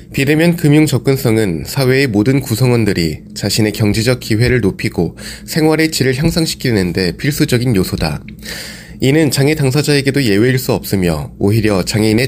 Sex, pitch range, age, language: male, 105-140 Hz, 20-39, Korean